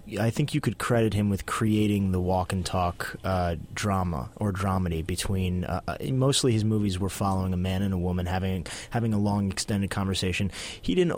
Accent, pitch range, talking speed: American, 95-105 Hz, 195 wpm